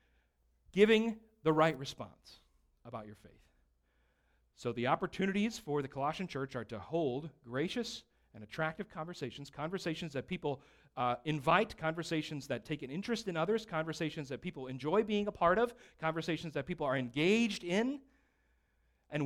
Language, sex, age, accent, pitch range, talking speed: English, male, 40-59, American, 125-195 Hz, 150 wpm